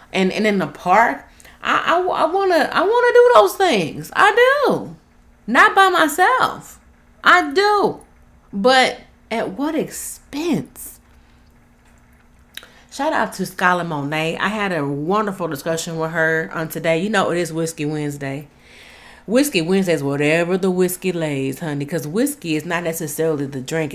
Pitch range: 165-240 Hz